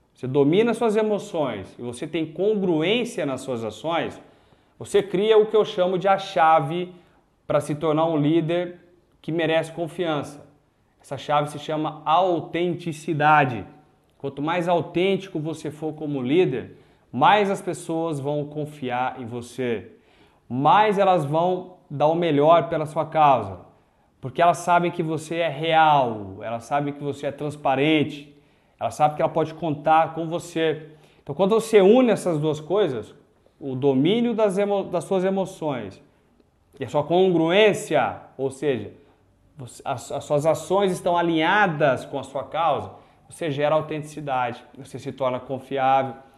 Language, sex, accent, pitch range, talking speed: Portuguese, male, Brazilian, 145-175 Hz, 150 wpm